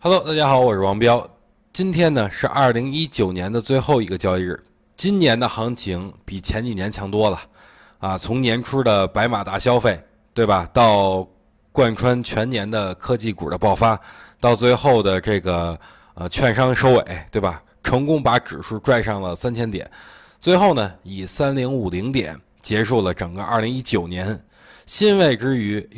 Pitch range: 95-130 Hz